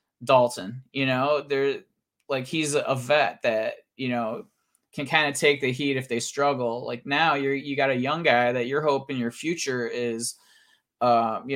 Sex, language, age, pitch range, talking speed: male, English, 20-39, 120-150 Hz, 185 wpm